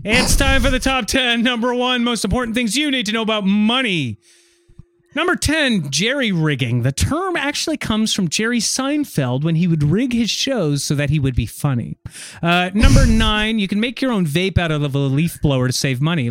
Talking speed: 210 wpm